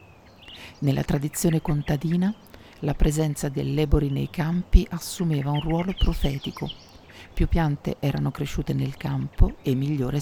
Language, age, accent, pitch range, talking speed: Italian, 50-69, native, 130-165 Hz, 125 wpm